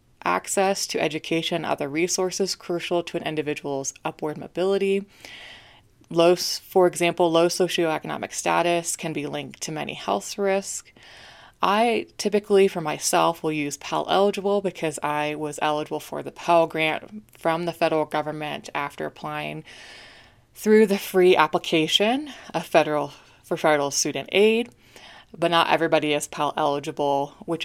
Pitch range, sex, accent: 150-185 Hz, female, American